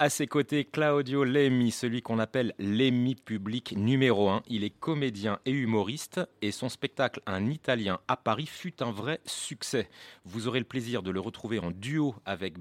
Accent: French